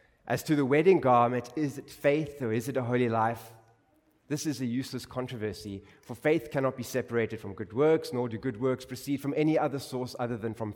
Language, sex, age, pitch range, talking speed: English, male, 30-49, 110-140 Hz, 220 wpm